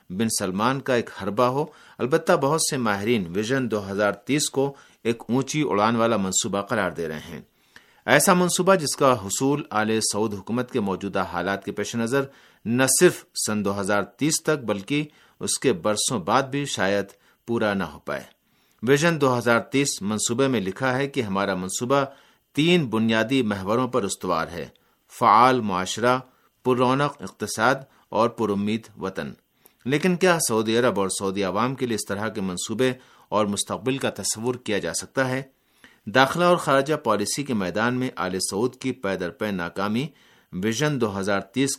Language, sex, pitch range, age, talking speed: Urdu, male, 105-135 Hz, 50-69, 165 wpm